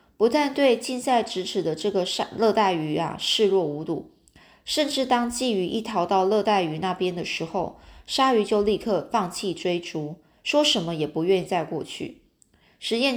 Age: 20-39